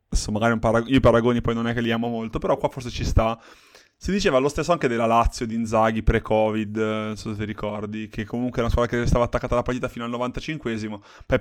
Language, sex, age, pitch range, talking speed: Italian, male, 20-39, 115-125 Hz, 245 wpm